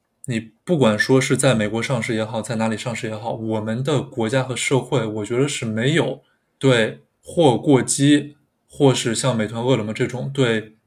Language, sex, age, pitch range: Chinese, male, 20-39, 120-140 Hz